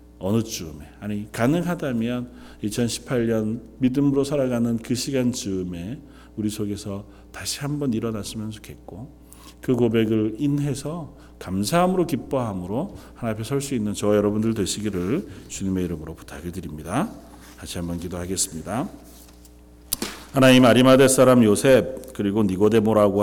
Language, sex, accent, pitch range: Korean, male, native, 85-115 Hz